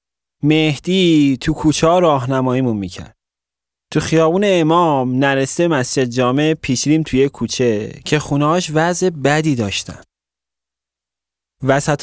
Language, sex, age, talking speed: Persian, male, 30-49, 100 wpm